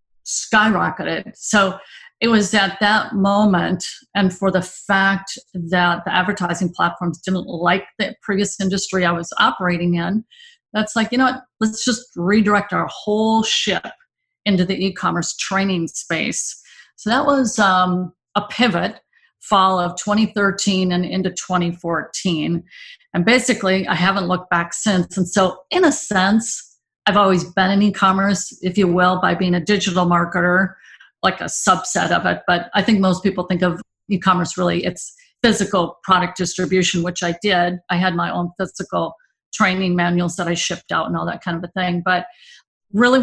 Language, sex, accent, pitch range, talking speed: English, female, American, 180-215 Hz, 165 wpm